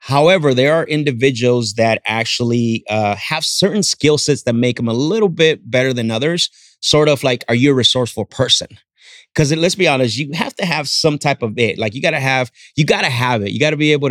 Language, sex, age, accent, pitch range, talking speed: English, male, 30-49, American, 115-140 Hz, 235 wpm